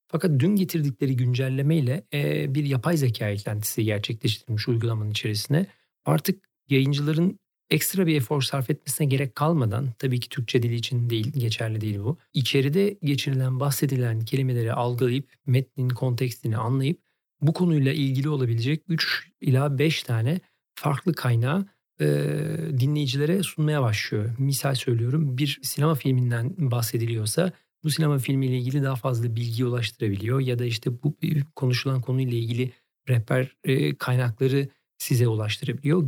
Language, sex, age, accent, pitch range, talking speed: Turkish, male, 40-59, native, 120-150 Hz, 130 wpm